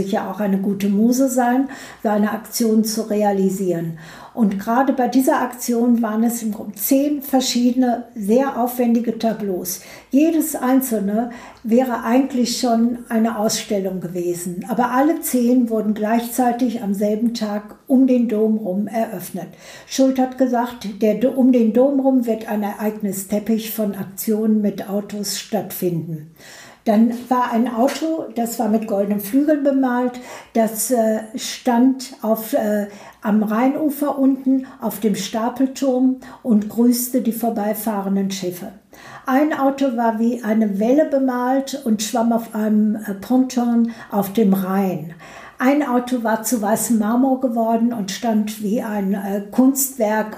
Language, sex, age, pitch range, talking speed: German, female, 60-79, 210-255 Hz, 140 wpm